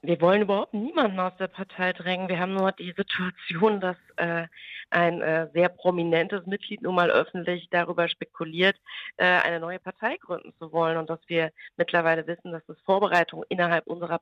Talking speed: 175 wpm